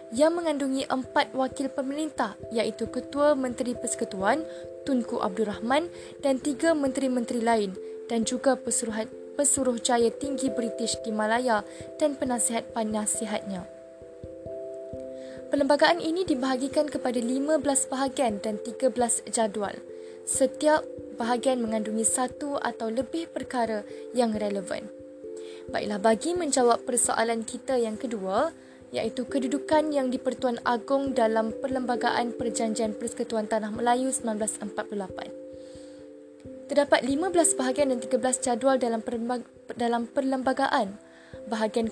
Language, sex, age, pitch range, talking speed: Malay, female, 10-29, 220-265 Hz, 105 wpm